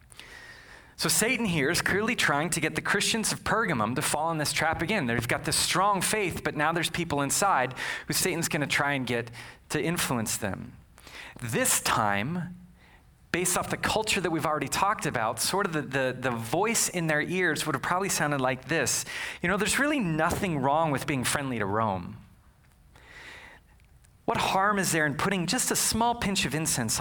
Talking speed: 195 wpm